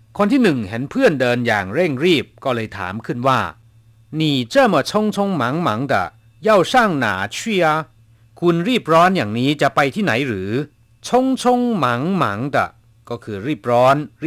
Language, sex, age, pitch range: Thai, male, 60-79, 115-160 Hz